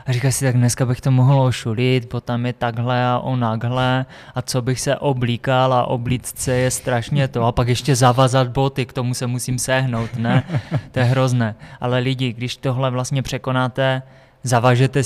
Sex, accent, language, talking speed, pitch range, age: male, native, Czech, 185 wpm, 125-135 Hz, 20-39